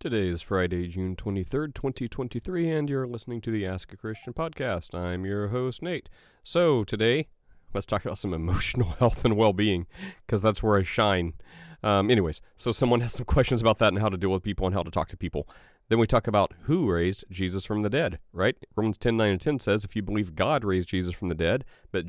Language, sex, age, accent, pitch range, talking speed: English, male, 40-59, American, 90-110 Hz, 225 wpm